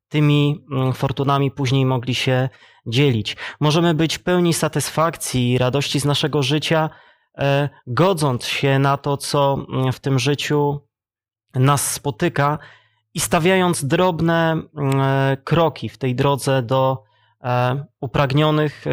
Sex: male